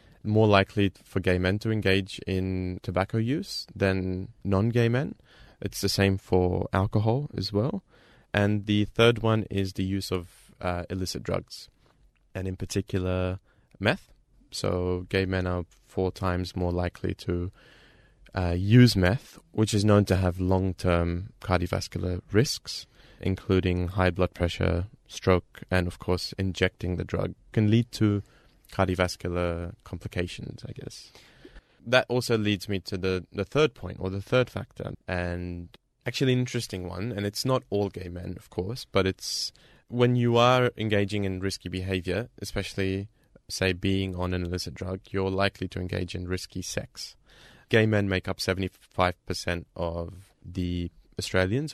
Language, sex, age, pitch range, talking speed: English, male, 20-39, 90-110 Hz, 155 wpm